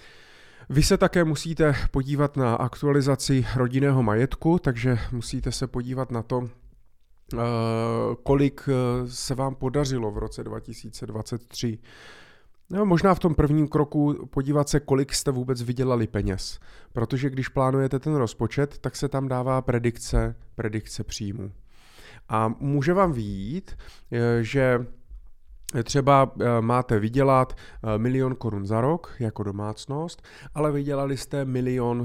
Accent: native